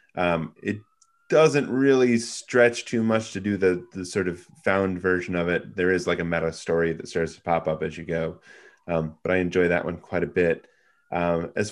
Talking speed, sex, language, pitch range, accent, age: 215 wpm, male, English, 85-105 Hz, American, 30-49